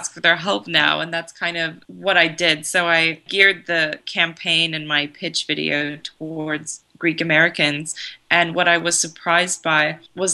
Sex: female